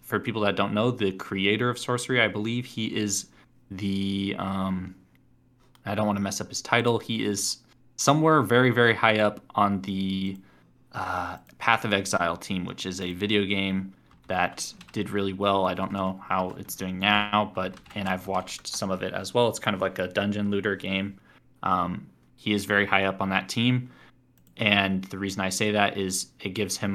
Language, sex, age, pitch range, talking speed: English, male, 20-39, 95-110 Hz, 200 wpm